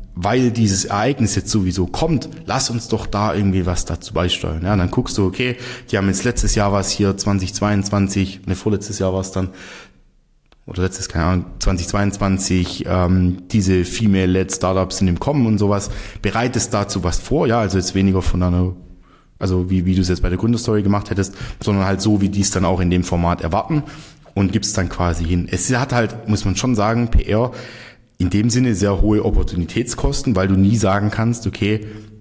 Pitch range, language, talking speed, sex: 90-110 Hz, German, 195 wpm, male